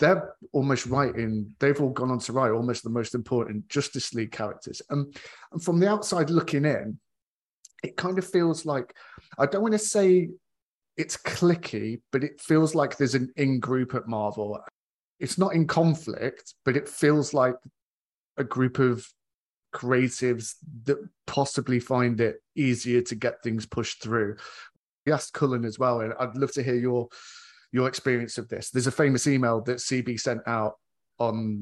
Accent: British